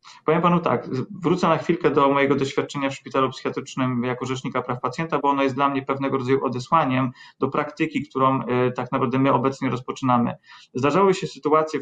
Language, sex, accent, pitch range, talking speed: Polish, male, native, 130-145 Hz, 180 wpm